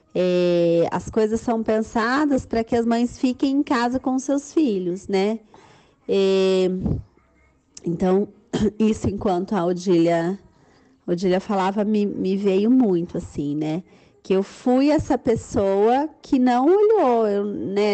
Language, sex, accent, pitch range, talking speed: Portuguese, female, Brazilian, 180-235 Hz, 125 wpm